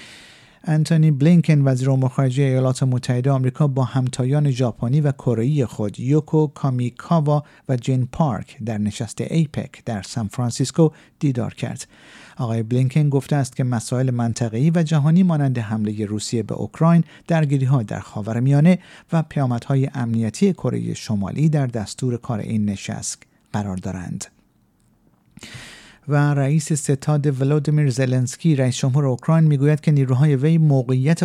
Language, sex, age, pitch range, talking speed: Persian, male, 50-69, 120-155 Hz, 130 wpm